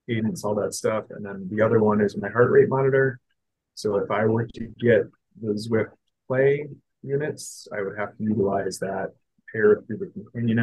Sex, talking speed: male, 200 wpm